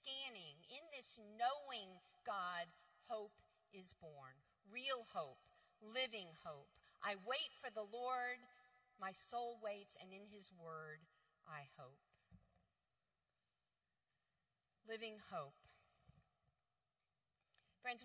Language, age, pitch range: English, 50-69, 185-245 Hz